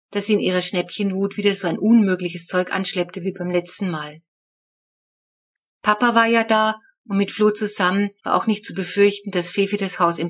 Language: German